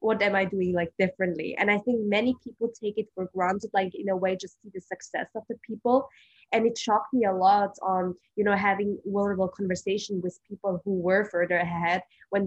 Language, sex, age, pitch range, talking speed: English, female, 20-39, 185-210 Hz, 215 wpm